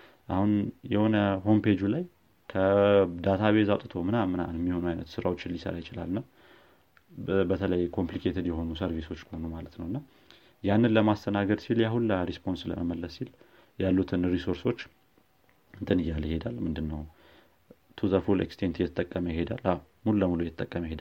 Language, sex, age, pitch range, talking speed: Amharic, male, 30-49, 85-100 Hz, 110 wpm